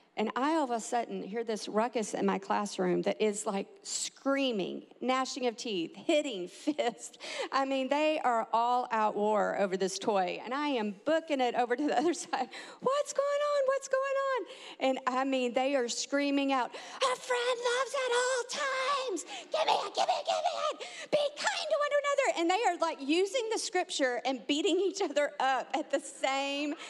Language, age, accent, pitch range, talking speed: English, 50-69, American, 230-310 Hz, 200 wpm